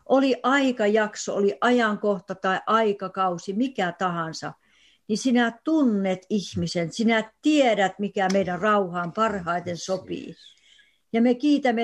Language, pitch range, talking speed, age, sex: Finnish, 190-250 Hz, 110 wpm, 60-79, female